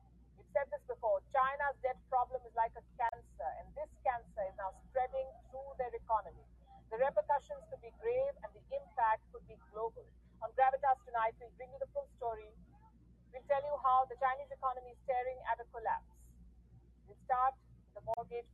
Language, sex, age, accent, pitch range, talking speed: English, female, 50-69, Indian, 210-275 Hz, 180 wpm